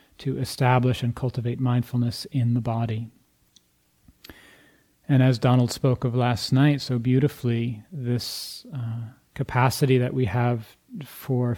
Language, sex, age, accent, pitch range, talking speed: English, male, 30-49, American, 115-130 Hz, 125 wpm